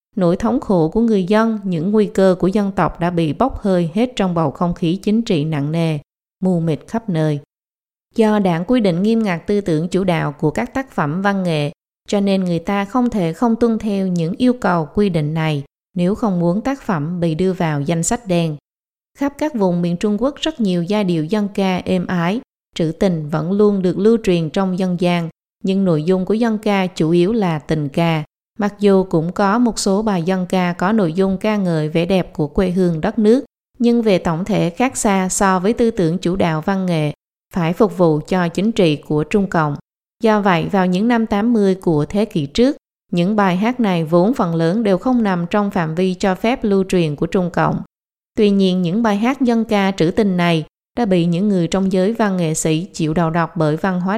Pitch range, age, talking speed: 170-210 Hz, 20-39, 225 wpm